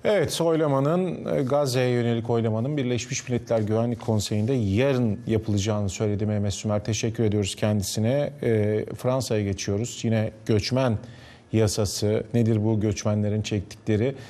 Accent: native